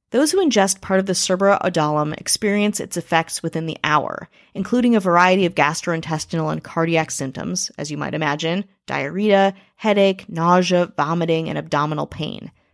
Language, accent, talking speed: English, American, 150 wpm